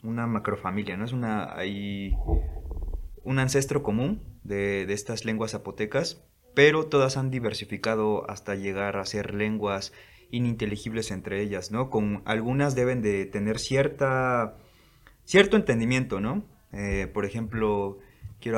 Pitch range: 100-120 Hz